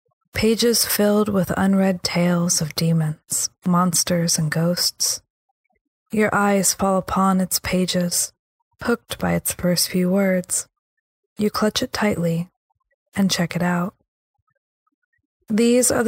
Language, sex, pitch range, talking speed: English, female, 180-230 Hz, 120 wpm